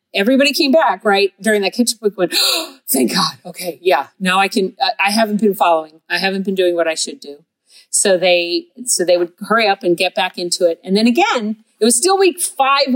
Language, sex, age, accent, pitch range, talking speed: English, female, 40-59, American, 180-245 Hz, 230 wpm